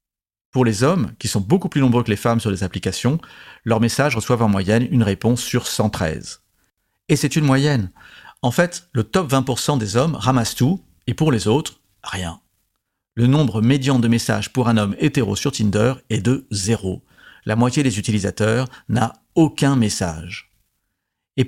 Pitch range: 110-135 Hz